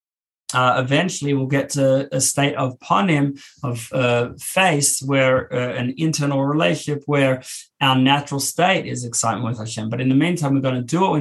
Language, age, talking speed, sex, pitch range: English, 20-39, 185 wpm, male, 125-150 Hz